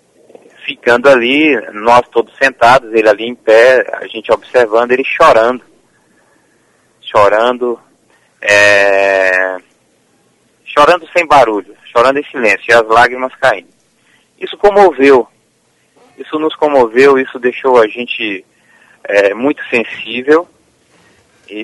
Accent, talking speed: Brazilian, 110 wpm